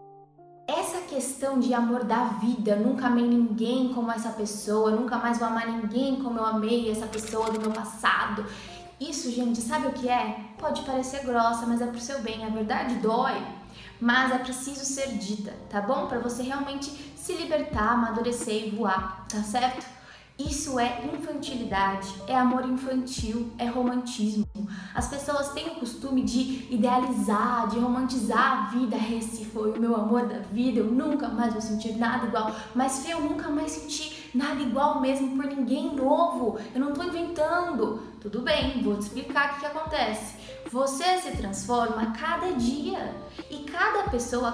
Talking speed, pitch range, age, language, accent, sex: 165 wpm, 230-290 Hz, 10-29, Portuguese, Brazilian, female